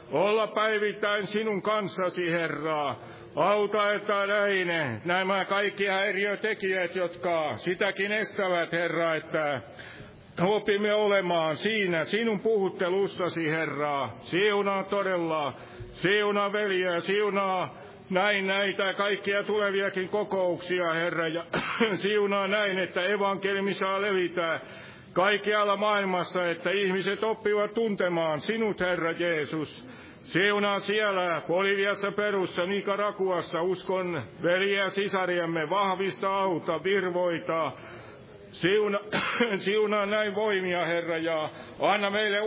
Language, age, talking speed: Finnish, 60-79, 95 wpm